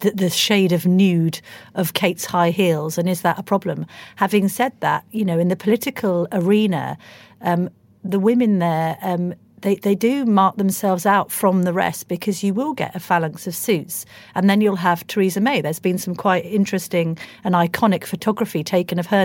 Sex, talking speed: female, 190 wpm